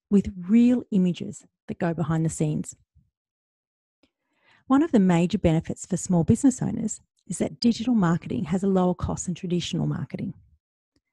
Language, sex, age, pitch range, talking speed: English, female, 40-59, 165-230 Hz, 150 wpm